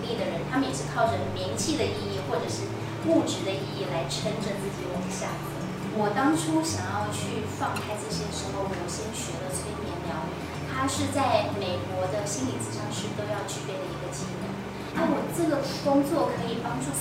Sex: female